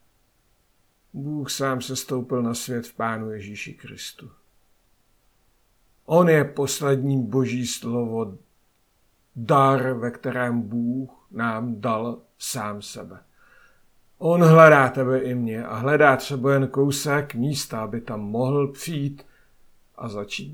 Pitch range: 115-140 Hz